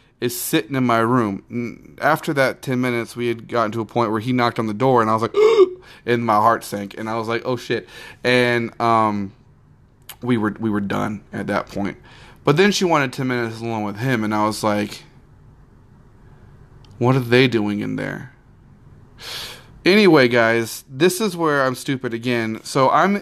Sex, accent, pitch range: male, American, 115-135 Hz